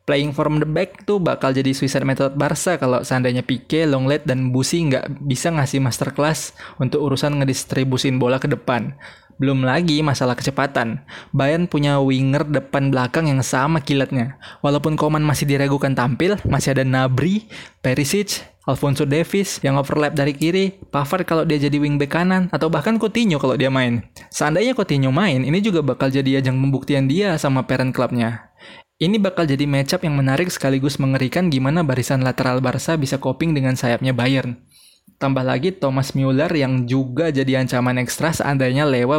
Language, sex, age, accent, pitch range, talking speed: Indonesian, male, 20-39, native, 130-155 Hz, 160 wpm